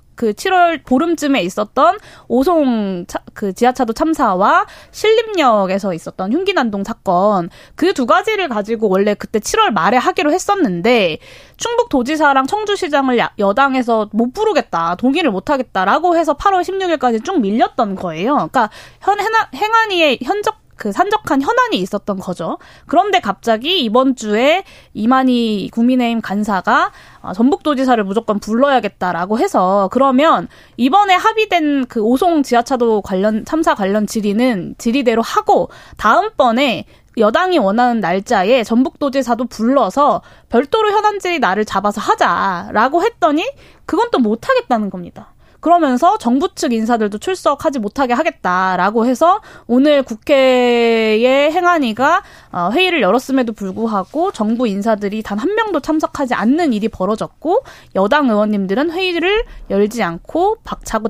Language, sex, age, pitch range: Korean, female, 20-39, 215-335 Hz